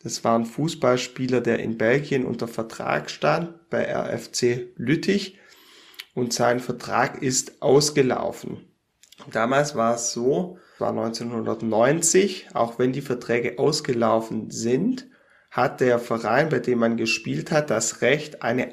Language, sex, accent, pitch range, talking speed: German, male, German, 115-140 Hz, 135 wpm